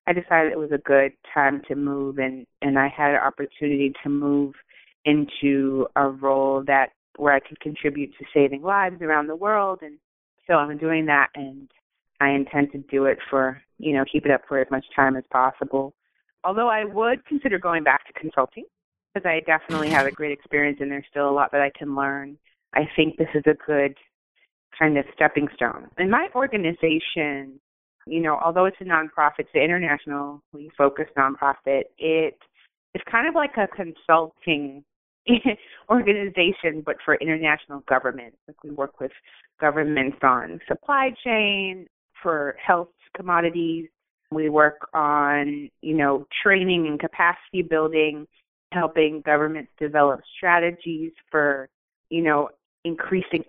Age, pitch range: 30-49, 140-165 Hz